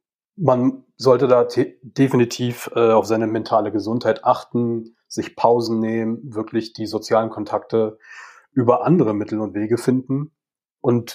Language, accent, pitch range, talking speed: German, German, 110-130 Hz, 135 wpm